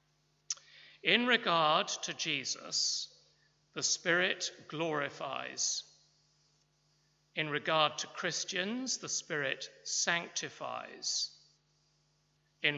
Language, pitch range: English, 140-165 Hz